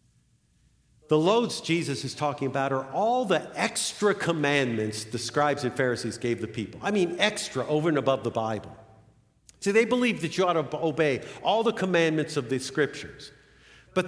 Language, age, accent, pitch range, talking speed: English, 50-69, American, 140-225 Hz, 175 wpm